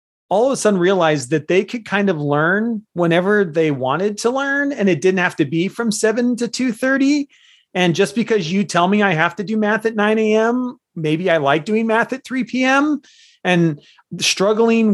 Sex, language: male, English